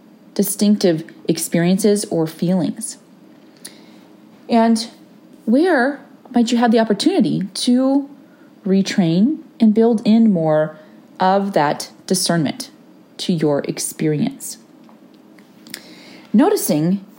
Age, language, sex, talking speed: 30-49, English, female, 85 wpm